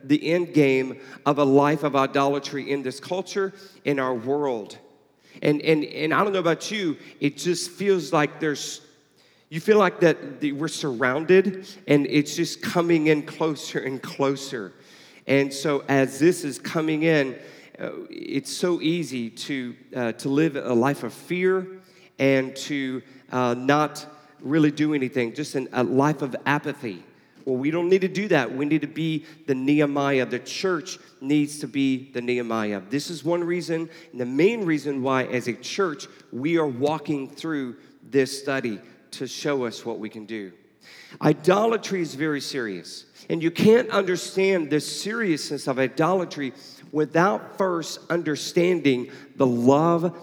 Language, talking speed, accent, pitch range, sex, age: English, 160 wpm, American, 135-170 Hz, male, 40-59